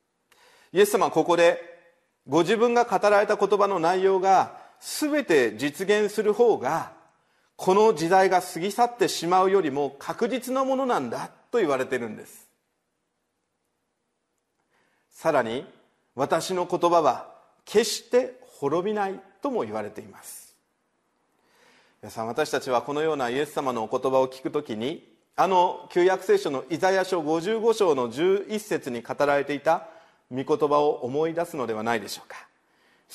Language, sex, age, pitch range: Japanese, male, 40-59, 150-210 Hz